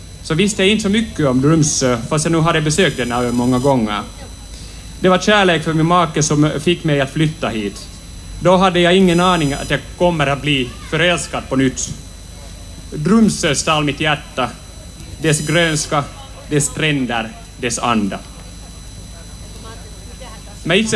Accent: native